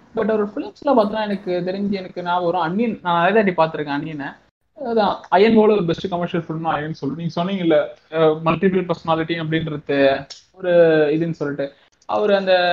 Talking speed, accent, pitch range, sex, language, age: 120 wpm, native, 165-215 Hz, male, Tamil, 20-39